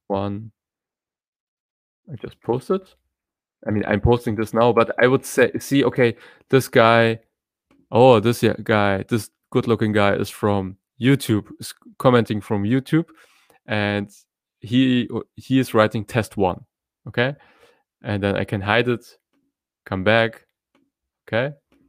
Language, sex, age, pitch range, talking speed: English, male, 20-39, 105-135 Hz, 130 wpm